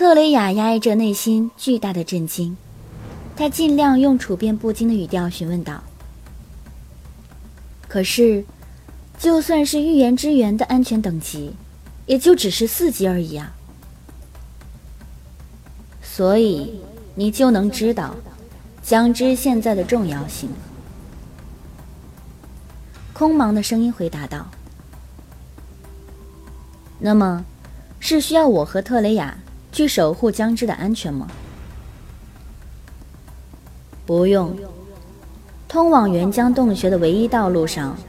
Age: 20-39